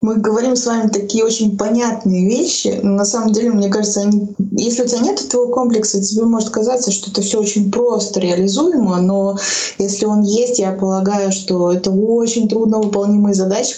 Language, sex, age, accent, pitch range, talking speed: Russian, female, 20-39, native, 195-240 Hz, 185 wpm